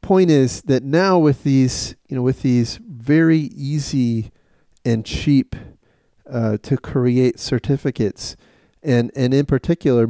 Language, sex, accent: English, male, American